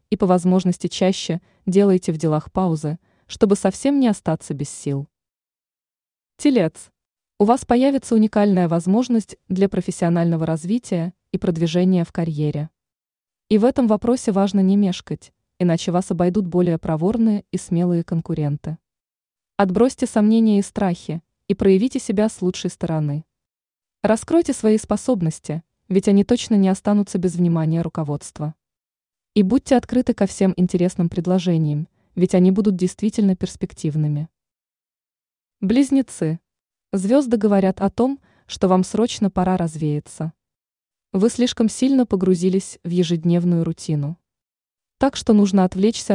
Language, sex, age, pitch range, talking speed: Russian, female, 20-39, 170-215 Hz, 125 wpm